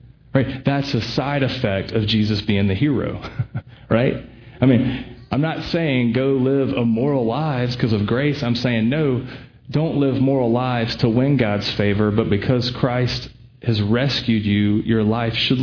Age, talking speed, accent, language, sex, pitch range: 30-49, 165 wpm, American, English, male, 110-130 Hz